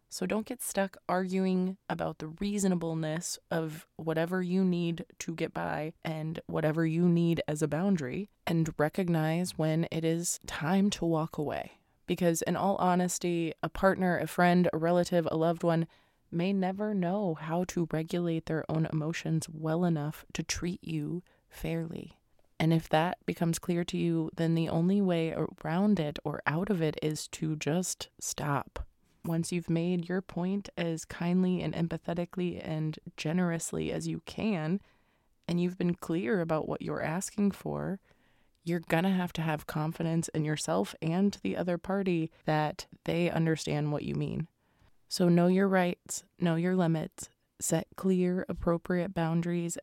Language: English